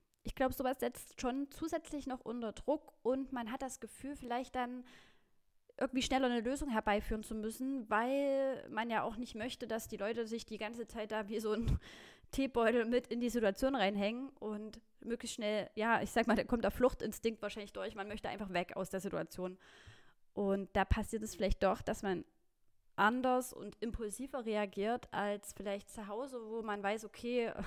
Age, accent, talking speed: 20-39, German, 185 wpm